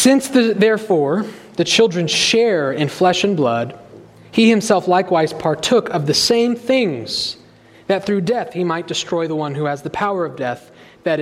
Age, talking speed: 30-49, 175 wpm